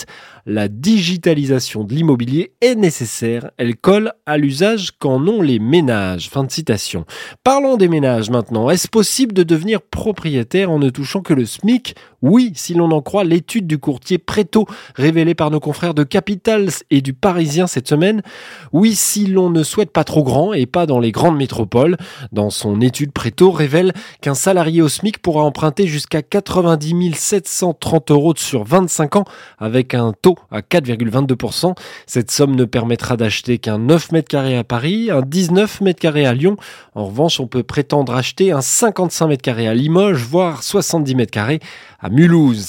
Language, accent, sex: French, French, male